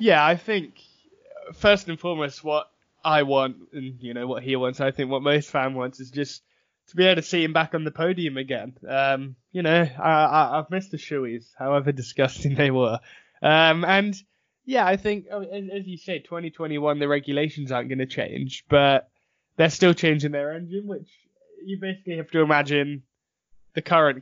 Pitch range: 135-165 Hz